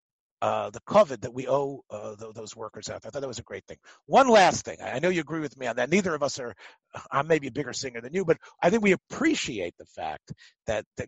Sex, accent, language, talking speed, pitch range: male, American, English, 275 wpm, 120-185 Hz